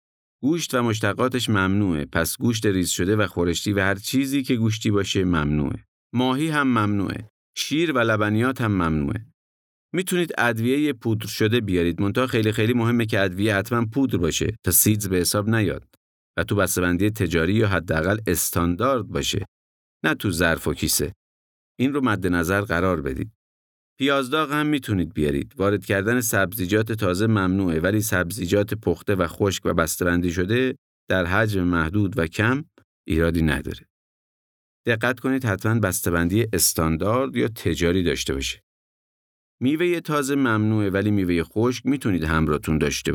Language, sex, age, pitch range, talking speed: Persian, male, 50-69, 85-115 Hz, 145 wpm